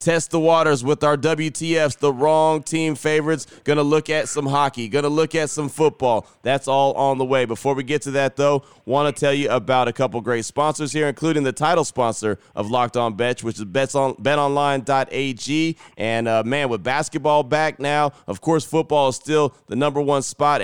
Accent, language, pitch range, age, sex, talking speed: American, English, 120-145 Hz, 30-49, male, 200 wpm